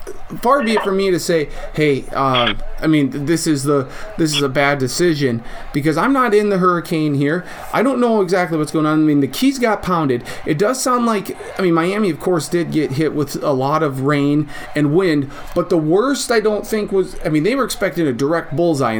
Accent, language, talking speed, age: American, English, 235 wpm, 30-49